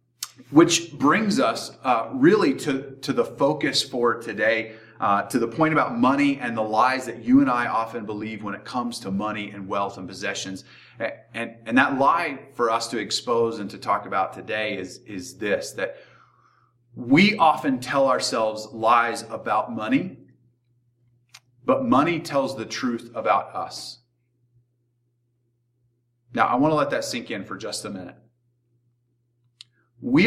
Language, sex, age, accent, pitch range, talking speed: English, male, 30-49, American, 115-130 Hz, 160 wpm